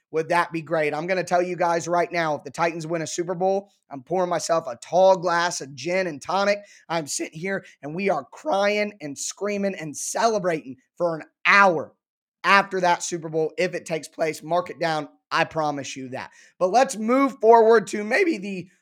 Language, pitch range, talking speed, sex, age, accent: English, 165-200 Hz, 205 wpm, male, 20-39, American